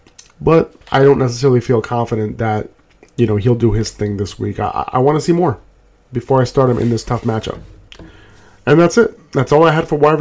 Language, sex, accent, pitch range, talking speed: English, male, American, 115-135 Hz, 215 wpm